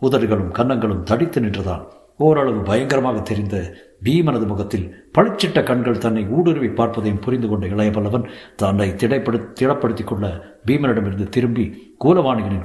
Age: 60-79